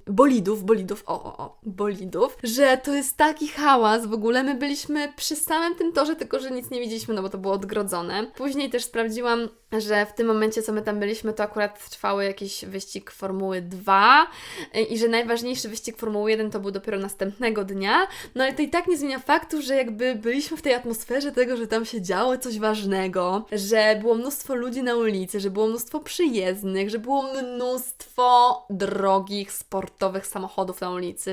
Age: 20-39